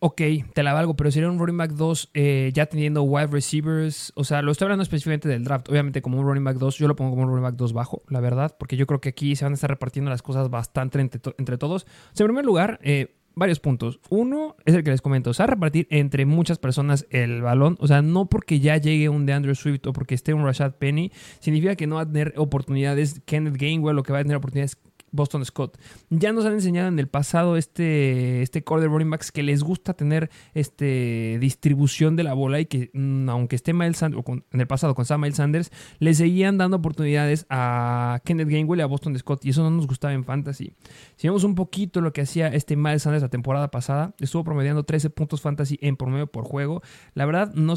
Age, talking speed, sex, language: 20-39, 240 wpm, male, Spanish